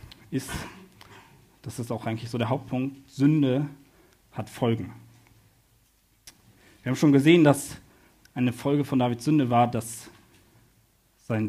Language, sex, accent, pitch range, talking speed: German, male, German, 115-135 Hz, 125 wpm